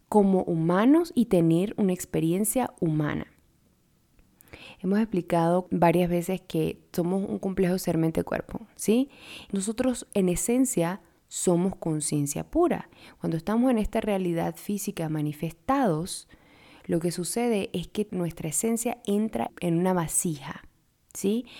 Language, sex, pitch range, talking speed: Spanish, female, 170-220 Hz, 120 wpm